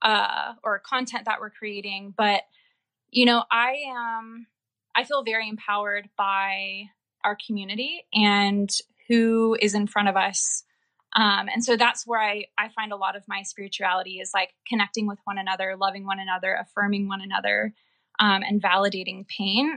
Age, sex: 20-39, female